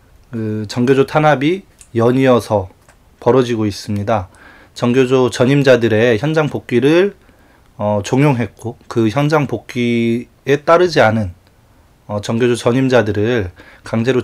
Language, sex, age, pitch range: Korean, male, 20-39, 105-135 Hz